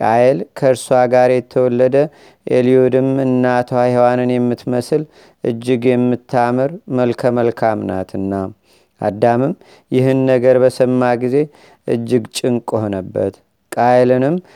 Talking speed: 80 wpm